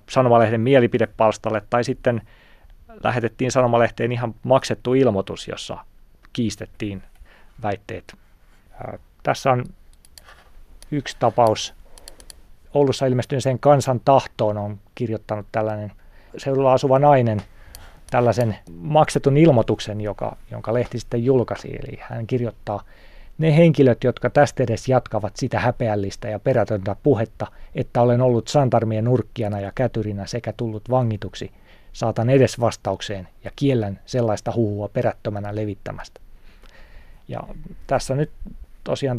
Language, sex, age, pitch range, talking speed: Finnish, male, 30-49, 105-130 Hz, 110 wpm